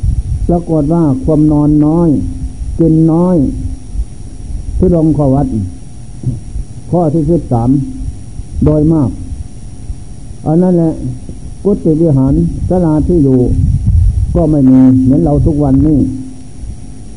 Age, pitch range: 60-79, 125-155 Hz